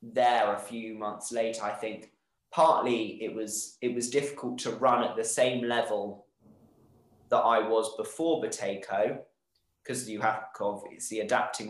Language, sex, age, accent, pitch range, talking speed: English, male, 20-39, British, 105-130 Hz, 150 wpm